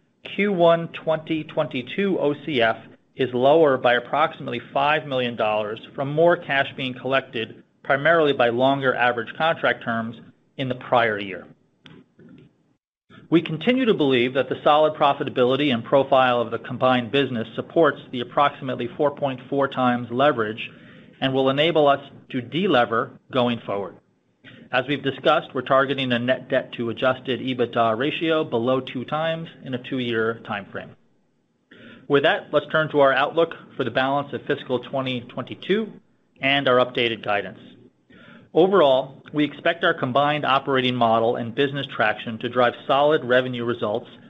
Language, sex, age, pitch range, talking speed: English, male, 30-49, 120-145 Hz, 140 wpm